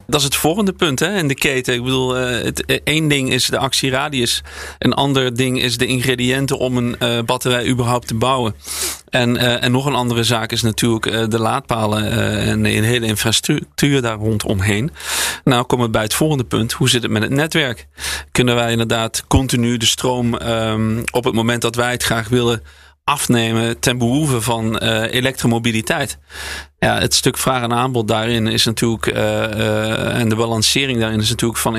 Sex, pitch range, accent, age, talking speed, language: male, 110-125 Hz, Dutch, 40-59, 190 wpm, Dutch